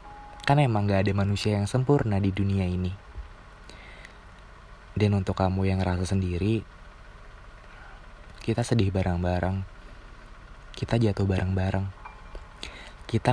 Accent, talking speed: native, 105 wpm